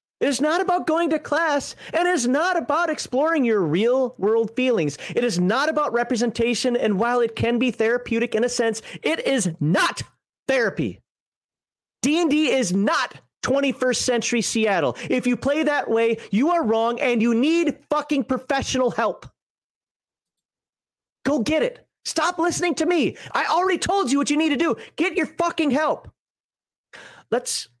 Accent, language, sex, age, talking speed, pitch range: American, English, male, 30-49, 160 wpm, 200-290 Hz